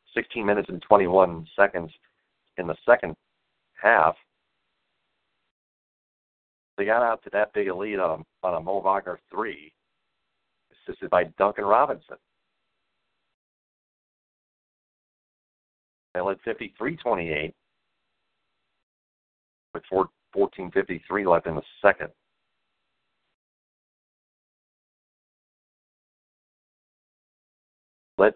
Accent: American